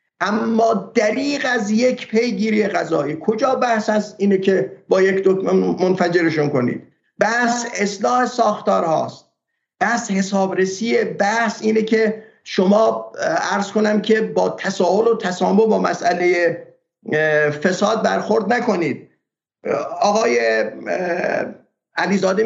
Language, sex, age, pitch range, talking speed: Persian, male, 50-69, 180-220 Hz, 105 wpm